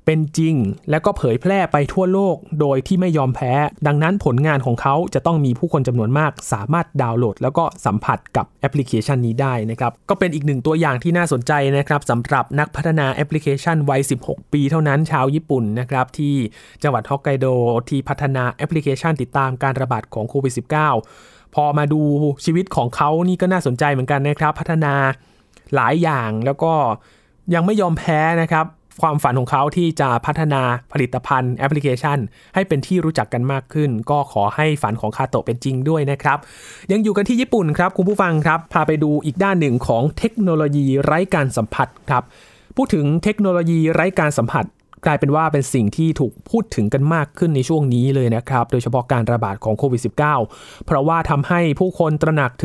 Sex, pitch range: male, 130-165 Hz